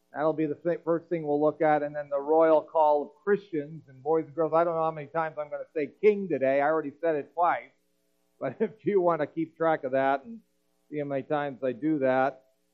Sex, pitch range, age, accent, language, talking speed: male, 130-185 Hz, 40-59, American, English, 250 wpm